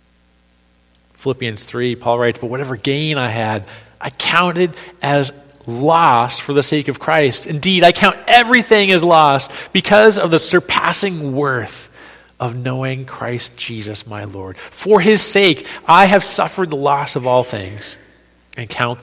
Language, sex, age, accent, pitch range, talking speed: English, male, 40-59, American, 120-185 Hz, 150 wpm